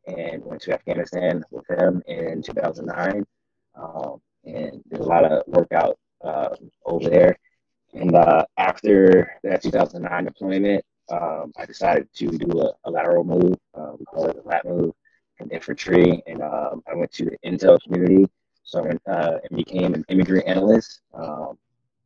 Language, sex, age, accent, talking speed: English, male, 20-39, American, 150 wpm